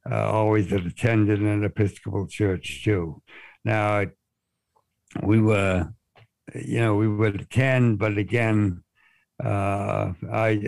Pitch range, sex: 100-115 Hz, male